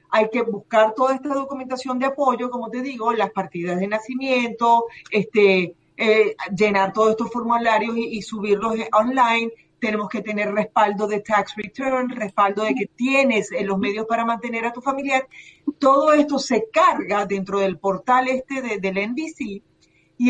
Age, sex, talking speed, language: 40-59, female, 165 wpm, Spanish